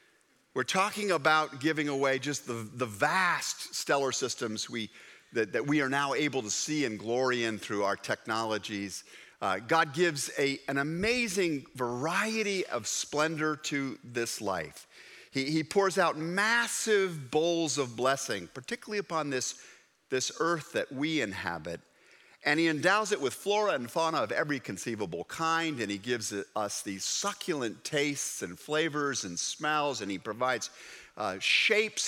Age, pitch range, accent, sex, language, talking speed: 50-69, 125-165 Hz, American, male, English, 155 wpm